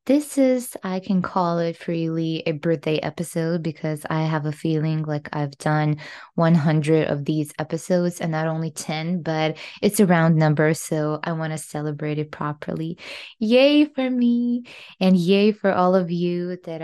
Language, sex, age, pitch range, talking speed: English, female, 20-39, 155-180 Hz, 170 wpm